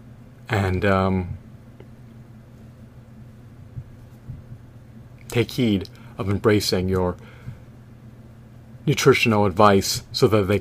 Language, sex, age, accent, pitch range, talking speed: English, male, 30-49, American, 95-120 Hz, 70 wpm